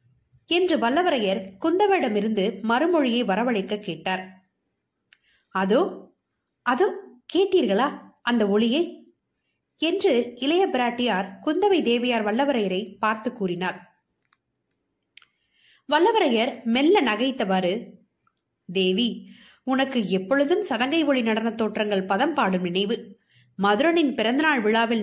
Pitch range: 205-290 Hz